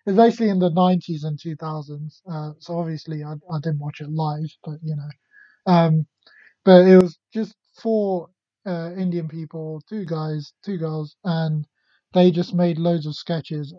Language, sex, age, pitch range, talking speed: English, male, 30-49, 155-180 Hz, 175 wpm